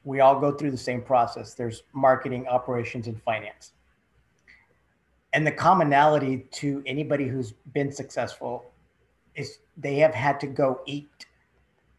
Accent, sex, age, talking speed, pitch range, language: American, male, 40-59, 135 wpm, 130-155 Hz, English